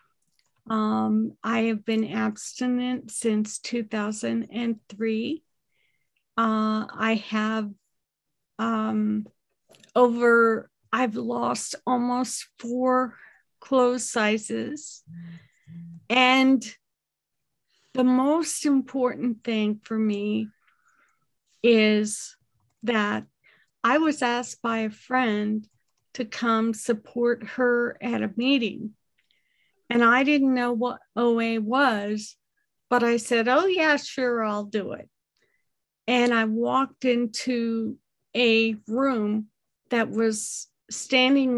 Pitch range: 215-245 Hz